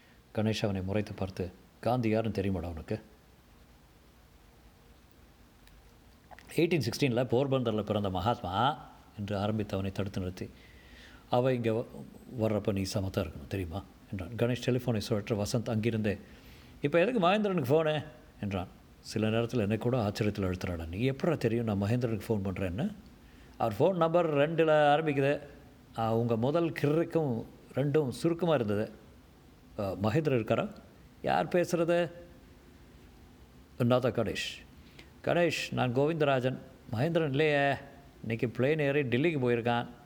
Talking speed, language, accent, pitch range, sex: 115 wpm, Tamil, native, 105-140 Hz, male